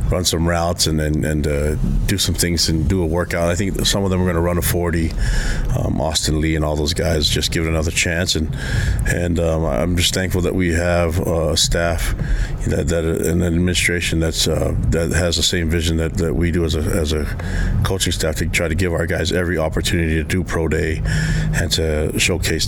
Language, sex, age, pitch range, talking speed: English, male, 30-49, 80-95 Hz, 225 wpm